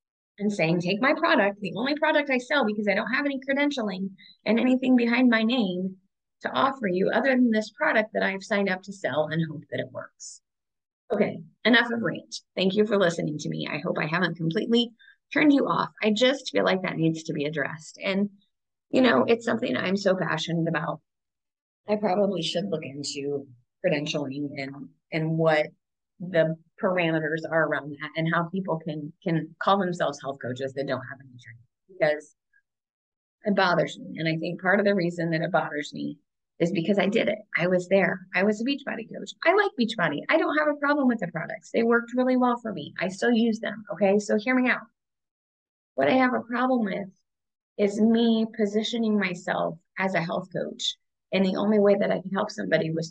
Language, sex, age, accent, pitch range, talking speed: English, female, 30-49, American, 160-230 Hz, 205 wpm